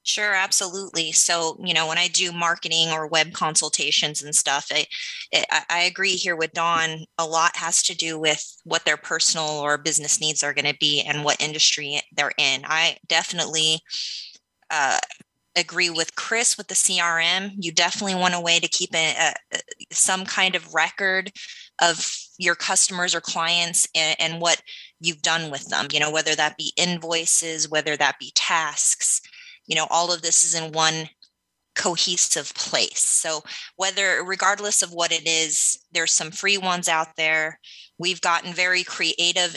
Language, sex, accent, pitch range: English, female, American, 155-180 Hz